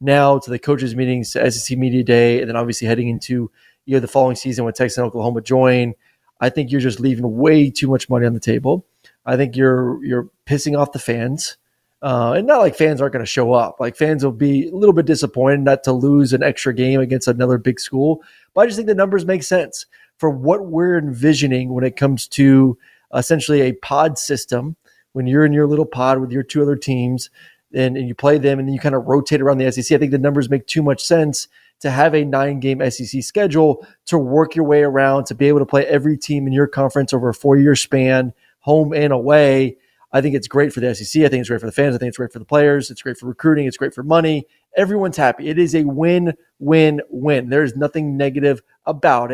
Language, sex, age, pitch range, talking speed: English, male, 30-49, 130-150 Hz, 230 wpm